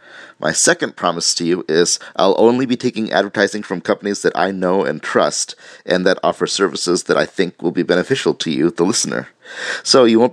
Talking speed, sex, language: 205 wpm, male, English